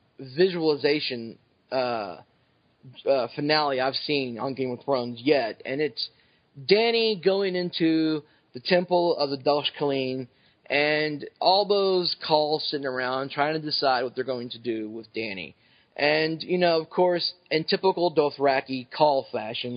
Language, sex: English, male